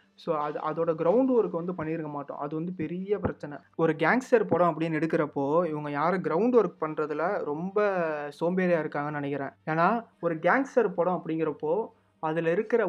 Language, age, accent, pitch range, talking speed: Tamil, 20-39, native, 150-175 Hz, 150 wpm